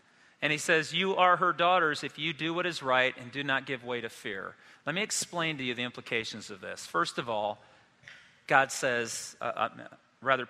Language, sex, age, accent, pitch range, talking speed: English, male, 40-59, American, 140-190 Hz, 210 wpm